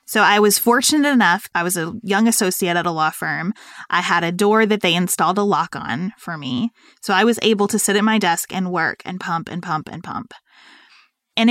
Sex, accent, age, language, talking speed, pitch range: female, American, 20-39, English, 230 wpm, 190-240 Hz